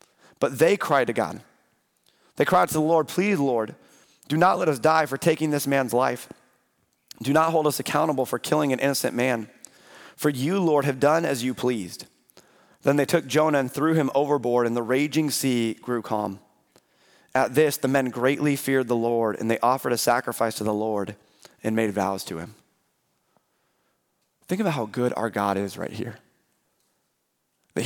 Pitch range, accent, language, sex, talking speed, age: 120-155 Hz, American, English, male, 185 wpm, 30-49